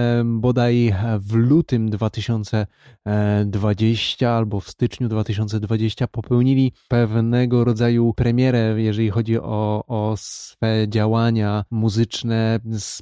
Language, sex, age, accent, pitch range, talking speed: Polish, male, 20-39, native, 110-130 Hz, 90 wpm